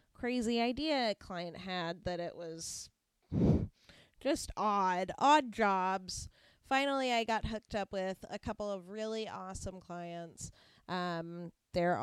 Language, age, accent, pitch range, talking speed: English, 20-39, American, 180-235 Hz, 130 wpm